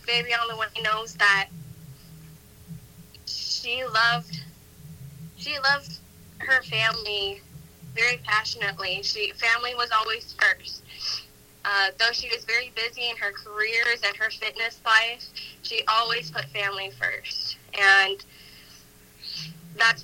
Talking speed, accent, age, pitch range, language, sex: 115 wpm, American, 10-29, 160-220 Hz, English, female